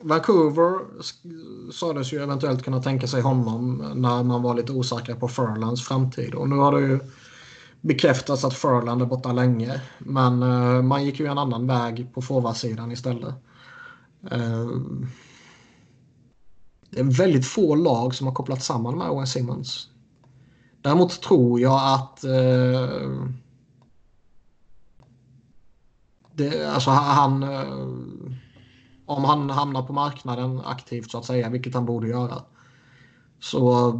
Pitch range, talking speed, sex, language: 120-135 Hz, 130 wpm, male, Swedish